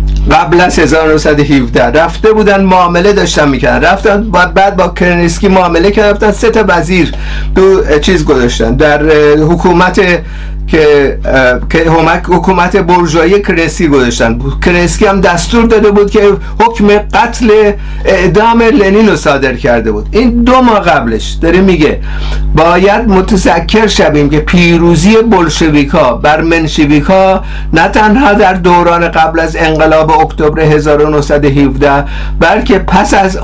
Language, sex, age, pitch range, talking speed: Persian, male, 50-69, 150-205 Hz, 120 wpm